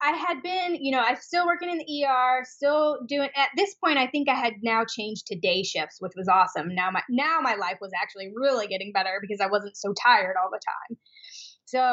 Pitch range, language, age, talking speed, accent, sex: 200-285 Hz, English, 20-39, 235 wpm, American, female